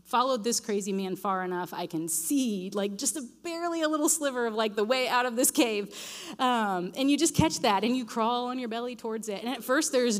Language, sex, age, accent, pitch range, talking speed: English, female, 30-49, American, 180-235 Hz, 245 wpm